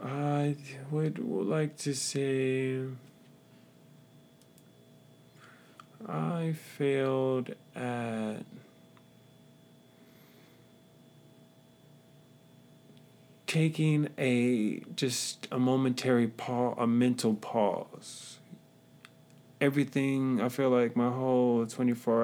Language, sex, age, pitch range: English, male, 30-49, 105-140 Hz